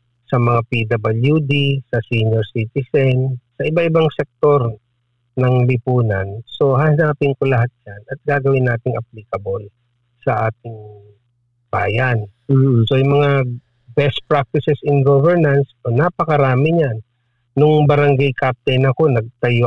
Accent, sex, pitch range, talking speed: native, male, 120-140 Hz, 115 wpm